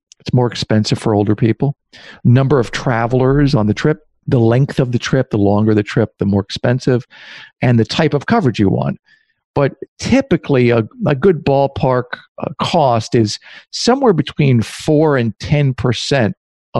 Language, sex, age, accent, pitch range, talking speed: English, male, 50-69, American, 115-150 Hz, 155 wpm